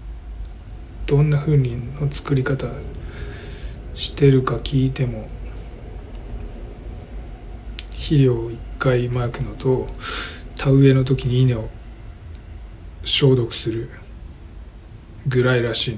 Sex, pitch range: male, 85-130 Hz